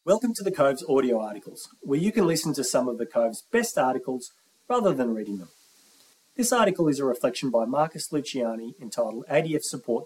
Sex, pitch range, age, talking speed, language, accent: male, 115-160 Hz, 30-49, 190 wpm, English, Australian